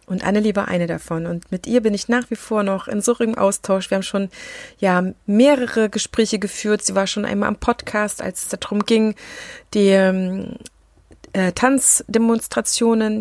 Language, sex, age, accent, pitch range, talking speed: German, female, 30-49, German, 190-220 Hz, 175 wpm